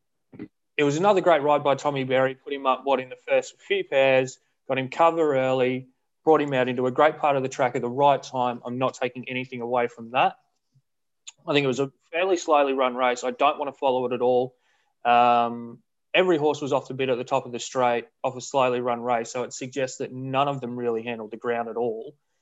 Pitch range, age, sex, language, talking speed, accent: 120-140 Hz, 20-39, male, English, 240 wpm, Australian